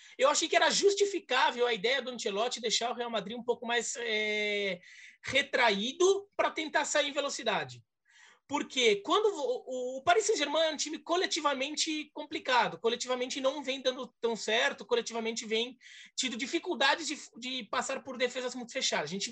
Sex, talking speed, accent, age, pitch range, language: male, 160 wpm, Brazilian, 20-39, 220-290 Hz, Portuguese